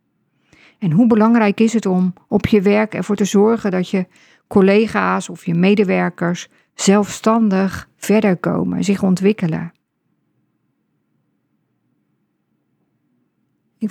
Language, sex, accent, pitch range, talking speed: Dutch, female, Dutch, 175-210 Hz, 105 wpm